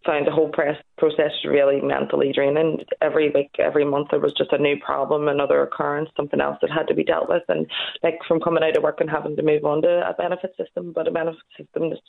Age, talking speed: 20-39, 250 wpm